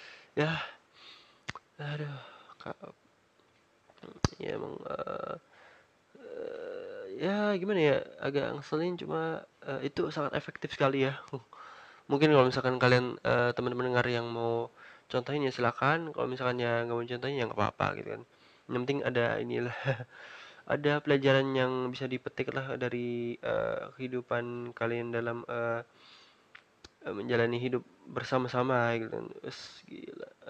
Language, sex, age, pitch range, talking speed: Indonesian, male, 20-39, 120-140 Hz, 120 wpm